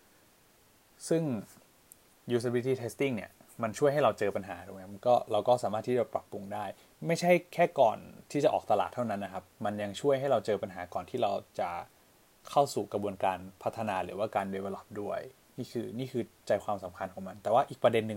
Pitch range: 100-125 Hz